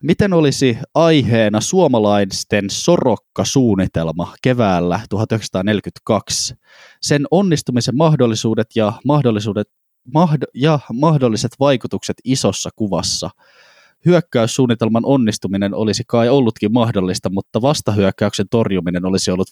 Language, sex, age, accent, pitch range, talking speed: Finnish, male, 20-39, native, 105-135 Hz, 85 wpm